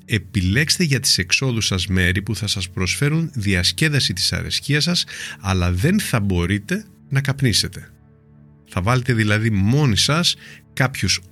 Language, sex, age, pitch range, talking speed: Greek, male, 30-49, 95-130 Hz, 140 wpm